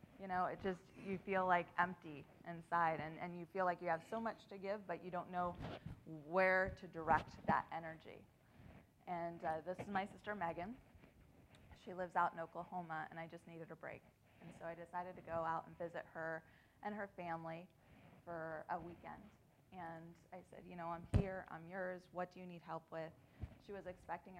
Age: 20-39